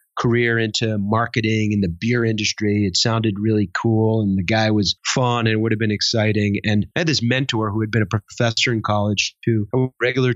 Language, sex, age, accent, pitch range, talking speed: English, male, 30-49, American, 110-135 Hz, 215 wpm